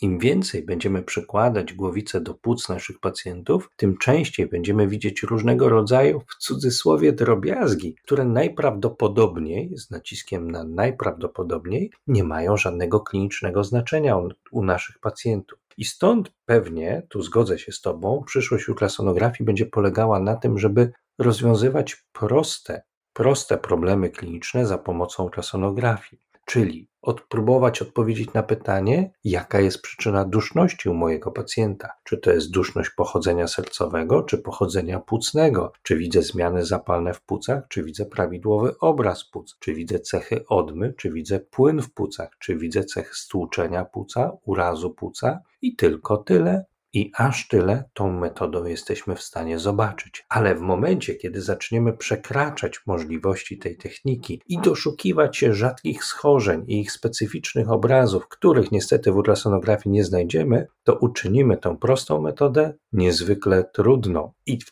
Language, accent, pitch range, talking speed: Polish, native, 90-120 Hz, 140 wpm